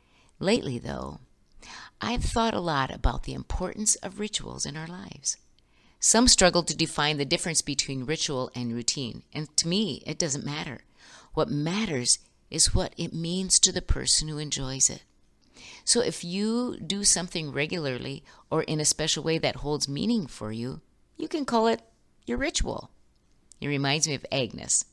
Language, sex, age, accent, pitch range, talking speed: English, female, 50-69, American, 125-170 Hz, 165 wpm